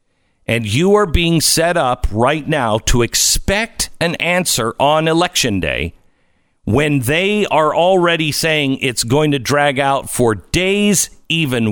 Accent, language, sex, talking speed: American, English, male, 145 wpm